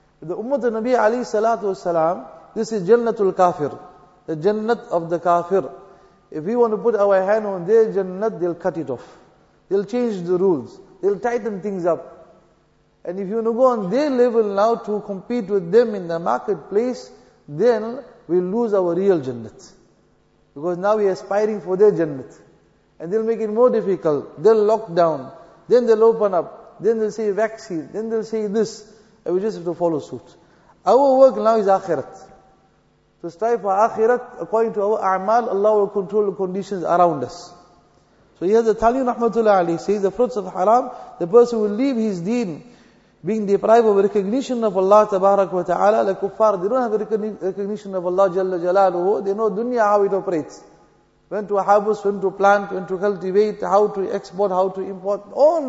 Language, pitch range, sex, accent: English, 185-225 Hz, male, Indian